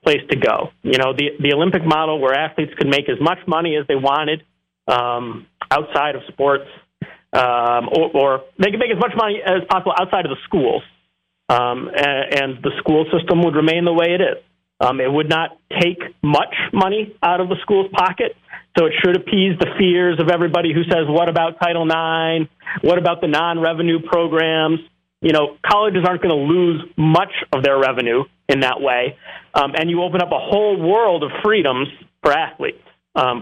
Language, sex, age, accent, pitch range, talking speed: English, male, 40-59, American, 150-185 Hz, 195 wpm